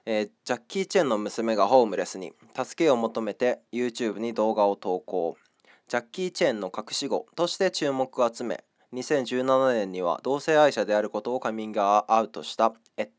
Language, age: Japanese, 20-39